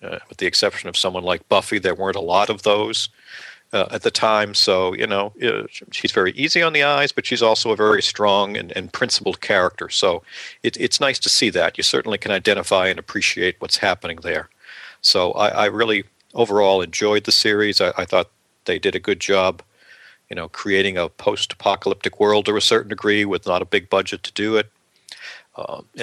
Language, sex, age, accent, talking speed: English, male, 50-69, American, 205 wpm